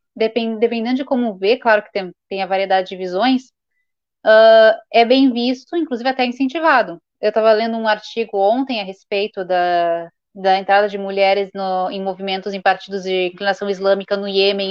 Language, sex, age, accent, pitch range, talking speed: Portuguese, female, 10-29, Brazilian, 200-250 Hz, 170 wpm